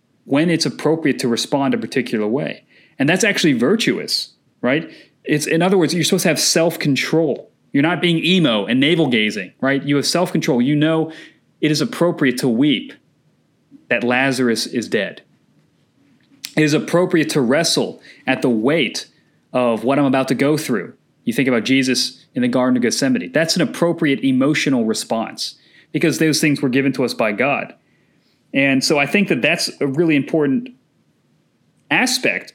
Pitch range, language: 135-175 Hz, English